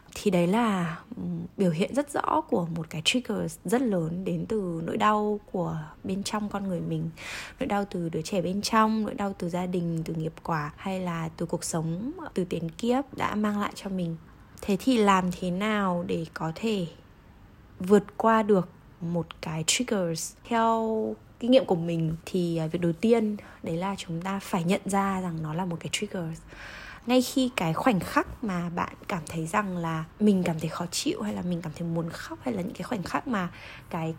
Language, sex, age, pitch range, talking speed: Vietnamese, female, 20-39, 165-220 Hz, 205 wpm